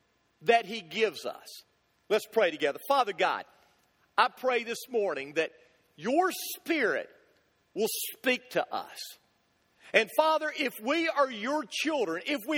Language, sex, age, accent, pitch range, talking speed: English, male, 50-69, American, 195-300 Hz, 140 wpm